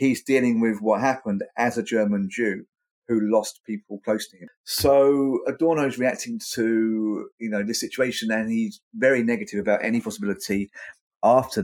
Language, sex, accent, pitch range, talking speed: English, male, British, 105-135 Hz, 165 wpm